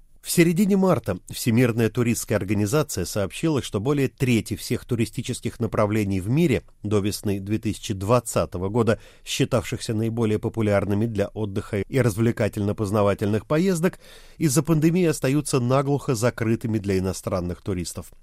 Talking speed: 115 wpm